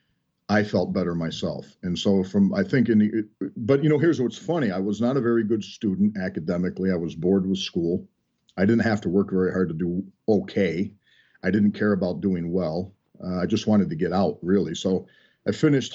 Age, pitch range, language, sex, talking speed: 50-69, 95-115 Hz, English, male, 215 wpm